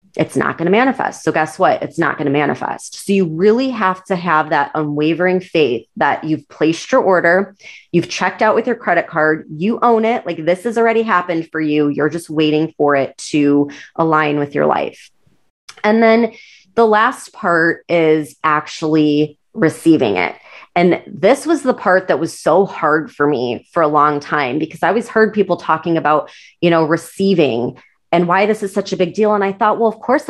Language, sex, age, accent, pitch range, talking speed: English, female, 30-49, American, 155-200 Hz, 200 wpm